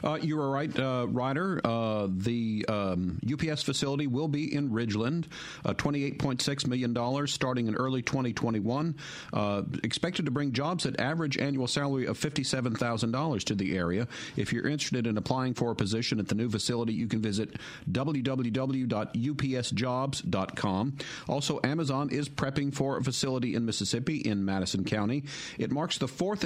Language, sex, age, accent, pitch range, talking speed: English, male, 50-69, American, 110-140 Hz, 150 wpm